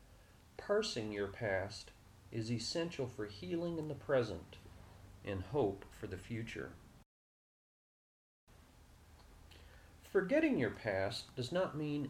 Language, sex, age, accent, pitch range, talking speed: English, male, 40-59, American, 100-130 Hz, 105 wpm